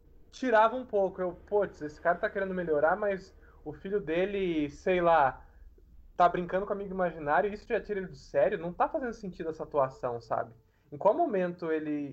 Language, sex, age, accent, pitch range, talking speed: Portuguese, male, 20-39, Brazilian, 135-190 Hz, 190 wpm